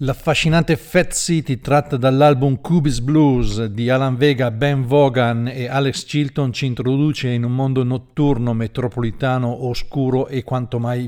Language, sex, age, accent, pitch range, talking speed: Italian, male, 50-69, native, 120-140 Hz, 140 wpm